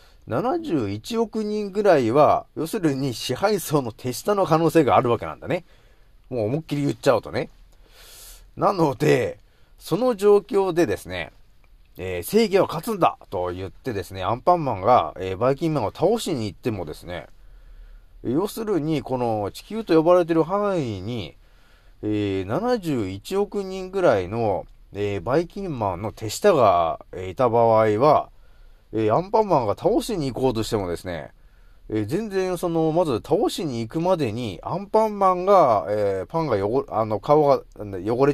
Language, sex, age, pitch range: Japanese, male, 30-49, 110-180 Hz